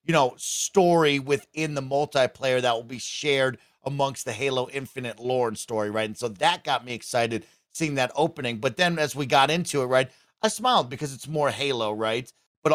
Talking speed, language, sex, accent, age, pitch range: 200 wpm, English, male, American, 30-49, 120-150 Hz